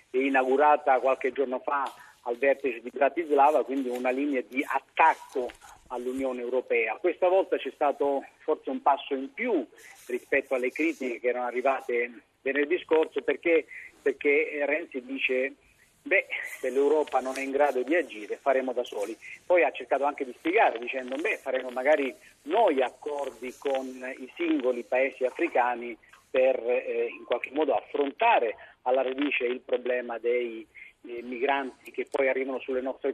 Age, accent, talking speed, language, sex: 40-59, native, 150 wpm, Italian, male